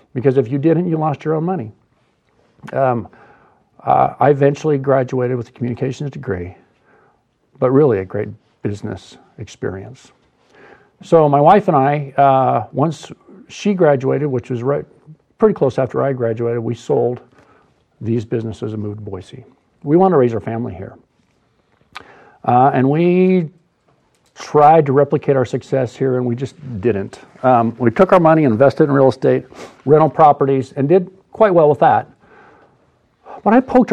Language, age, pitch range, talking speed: English, 50-69, 115-145 Hz, 160 wpm